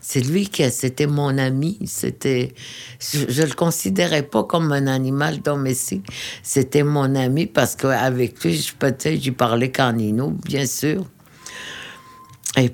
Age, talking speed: 60-79, 145 wpm